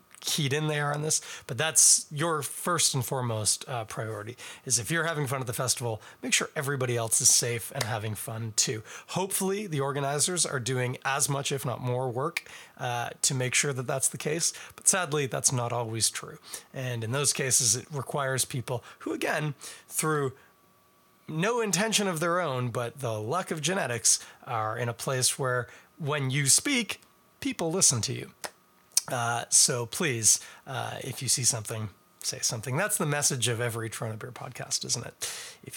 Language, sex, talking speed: English, male, 185 wpm